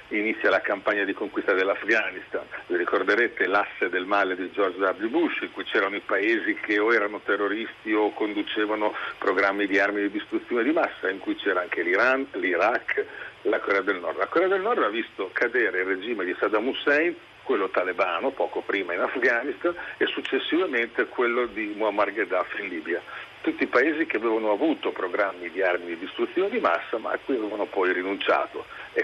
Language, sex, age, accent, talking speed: Italian, male, 50-69, native, 185 wpm